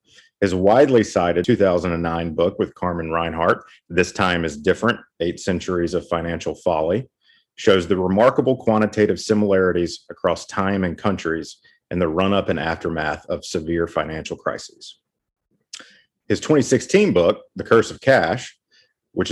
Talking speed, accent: 135 wpm, American